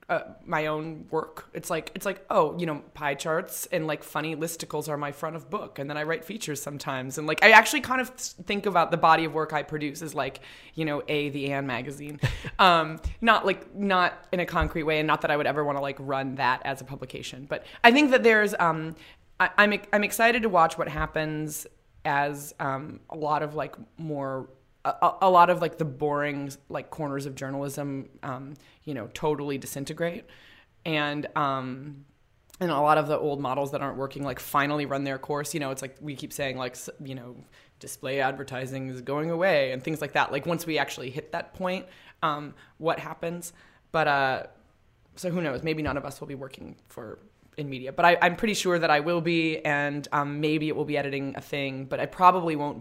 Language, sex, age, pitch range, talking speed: English, female, 20-39, 140-165 Hz, 220 wpm